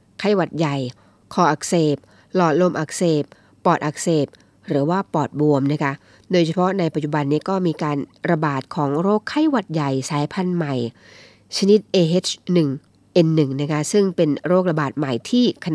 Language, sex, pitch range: Thai, female, 145-185 Hz